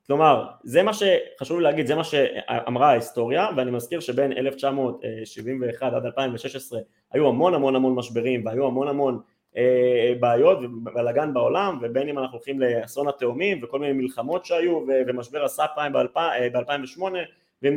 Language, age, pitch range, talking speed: Hebrew, 20-39, 120-165 Hz, 140 wpm